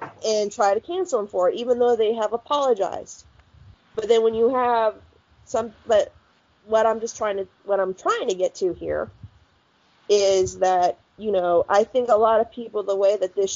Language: English